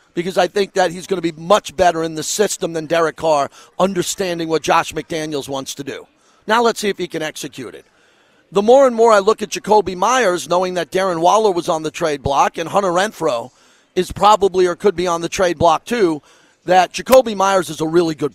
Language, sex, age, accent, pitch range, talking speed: English, male, 40-59, American, 165-200 Hz, 225 wpm